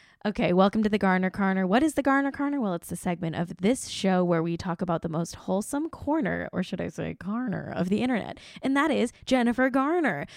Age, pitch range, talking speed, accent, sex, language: 10-29, 170-210 Hz, 225 wpm, American, female, English